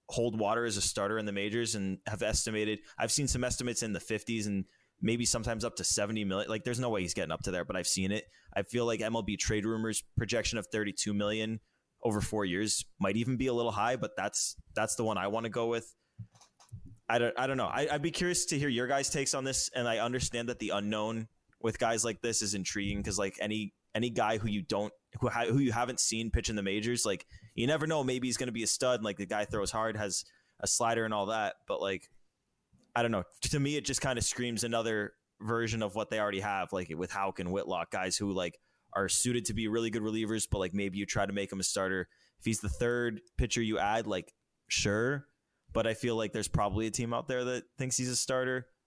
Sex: male